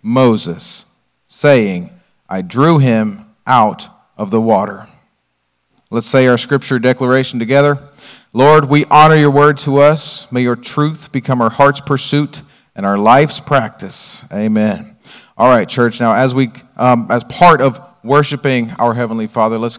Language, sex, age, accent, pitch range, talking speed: English, male, 40-59, American, 110-135 Hz, 150 wpm